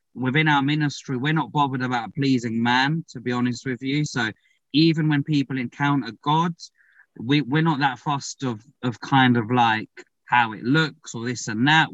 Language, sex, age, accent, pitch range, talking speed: English, male, 20-39, British, 125-150 Hz, 190 wpm